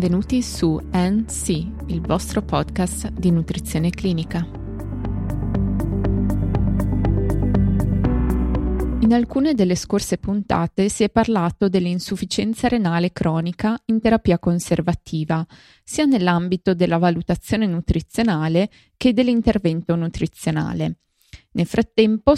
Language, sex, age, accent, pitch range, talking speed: Italian, female, 20-39, native, 170-220 Hz, 90 wpm